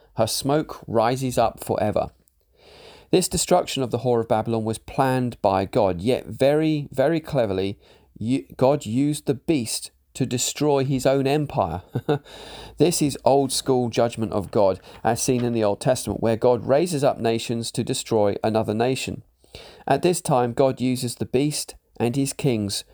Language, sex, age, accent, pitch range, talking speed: English, male, 40-59, British, 110-135 Hz, 160 wpm